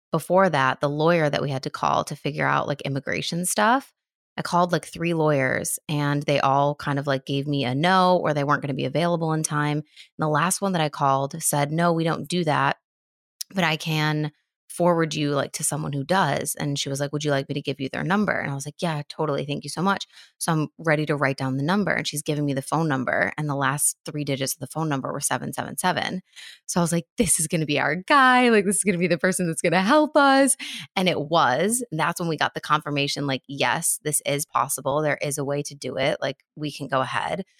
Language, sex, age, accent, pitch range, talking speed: English, female, 20-39, American, 140-170 Hz, 260 wpm